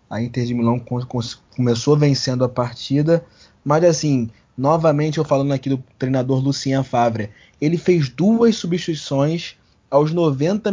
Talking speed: 135 wpm